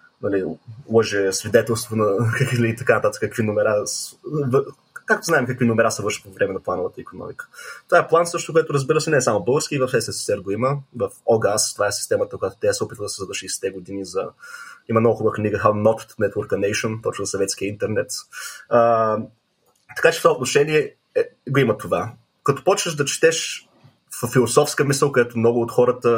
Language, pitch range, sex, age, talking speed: Bulgarian, 115-150 Hz, male, 20-39, 190 wpm